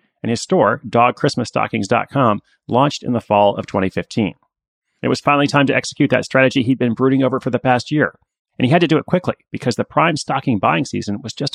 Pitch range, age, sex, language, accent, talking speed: 115-140 Hz, 30-49, male, English, American, 215 wpm